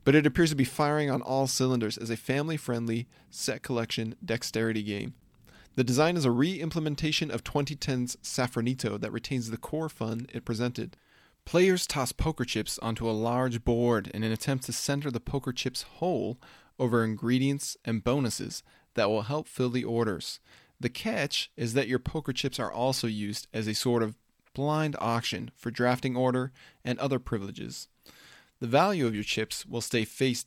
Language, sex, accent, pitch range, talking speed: English, male, American, 115-140 Hz, 175 wpm